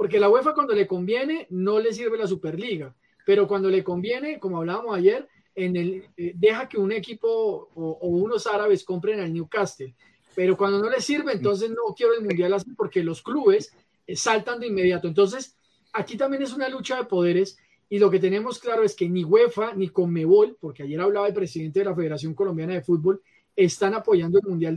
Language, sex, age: Spanish, male, 30-49